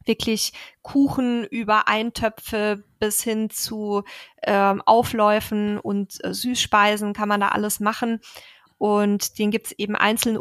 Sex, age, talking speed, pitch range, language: female, 20-39, 135 wpm, 195-220 Hz, German